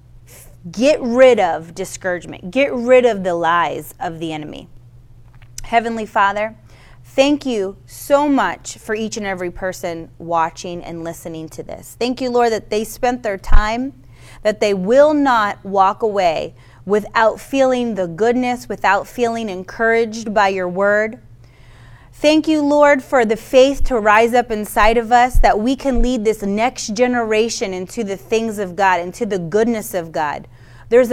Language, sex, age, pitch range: English, female, 30-49, 190-255 Hz